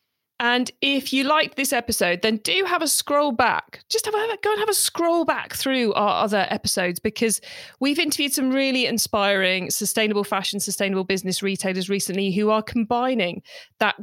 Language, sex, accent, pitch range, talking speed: English, female, British, 195-245 Hz, 175 wpm